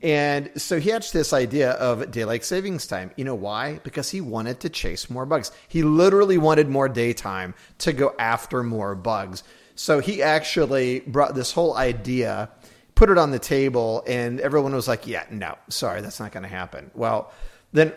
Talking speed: 185 wpm